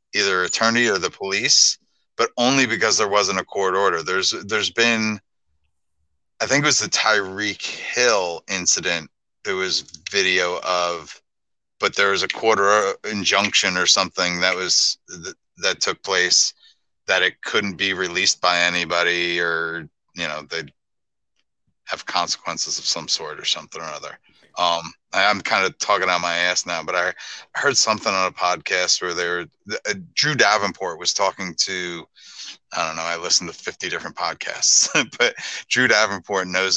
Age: 30-49